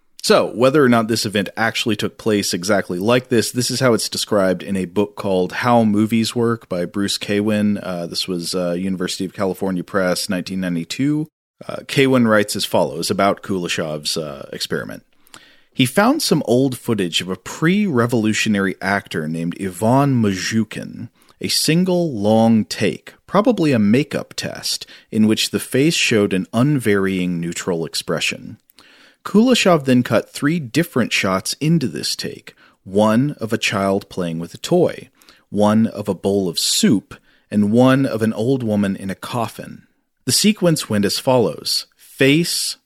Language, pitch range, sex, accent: English, 95-130 Hz, male, American